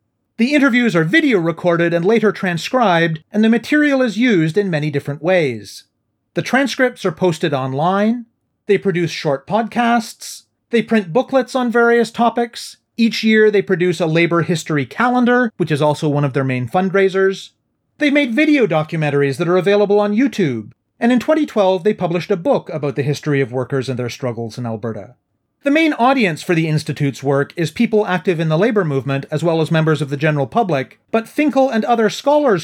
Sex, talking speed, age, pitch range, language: male, 185 wpm, 30-49, 150-230 Hz, English